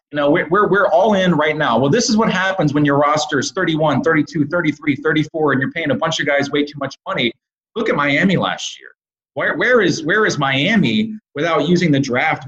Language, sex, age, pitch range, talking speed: English, male, 30-49, 140-185 Hz, 230 wpm